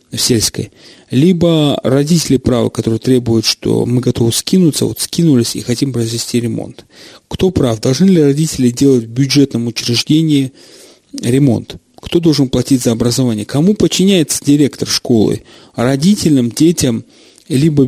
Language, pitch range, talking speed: Russian, 120-155 Hz, 130 wpm